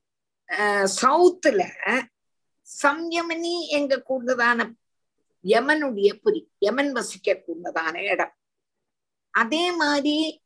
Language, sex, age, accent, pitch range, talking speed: Tamil, female, 50-69, native, 210-295 Hz, 70 wpm